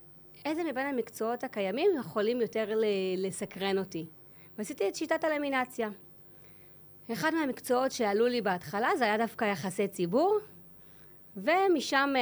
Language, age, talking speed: Hebrew, 30-49, 115 wpm